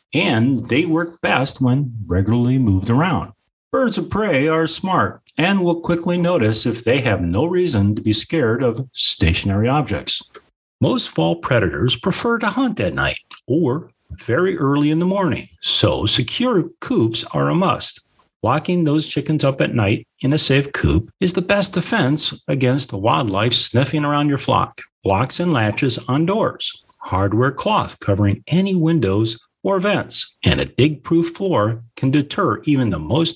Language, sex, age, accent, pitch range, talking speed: English, male, 50-69, American, 110-160 Hz, 160 wpm